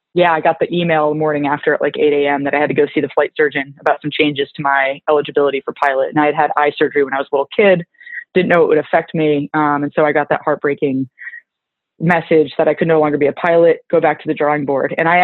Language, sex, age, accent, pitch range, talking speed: English, female, 20-39, American, 150-175 Hz, 280 wpm